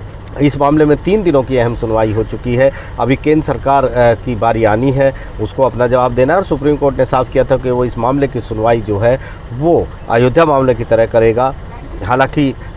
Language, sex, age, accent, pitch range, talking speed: Hindi, male, 50-69, native, 110-130 Hz, 210 wpm